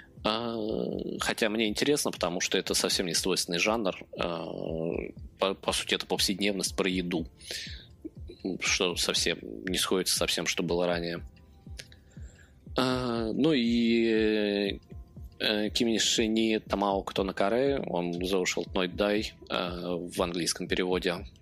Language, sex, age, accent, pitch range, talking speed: Russian, male, 20-39, native, 95-120 Hz, 105 wpm